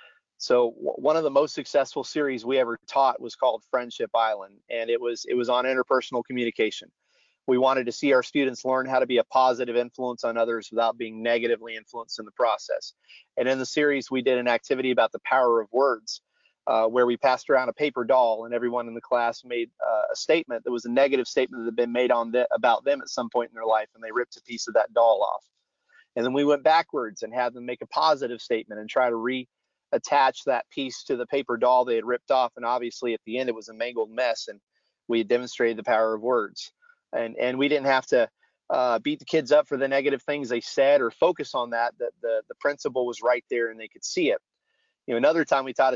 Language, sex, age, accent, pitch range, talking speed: English, male, 30-49, American, 120-140 Hz, 245 wpm